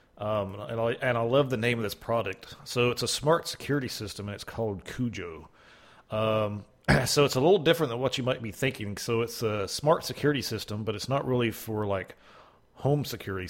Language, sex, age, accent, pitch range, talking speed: English, male, 40-59, American, 100-125 Hz, 210 wpm